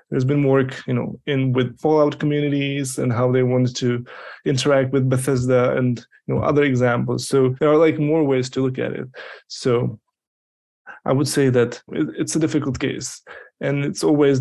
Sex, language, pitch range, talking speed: male, English, 125-145 Hz, 185 wpm